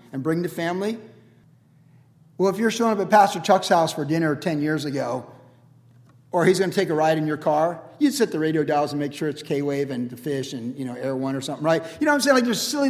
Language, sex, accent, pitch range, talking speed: English, male, American, 145-195 Hz, 265 wpm